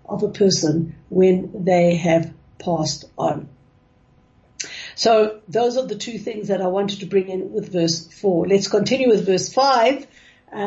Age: 60-79